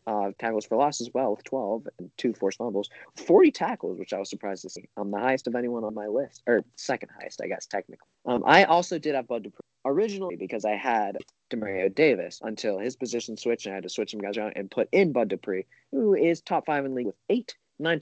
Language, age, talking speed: English, 30-49, 245 wpm